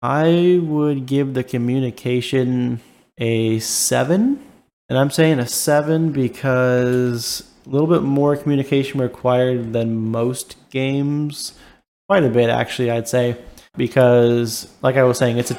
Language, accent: English, American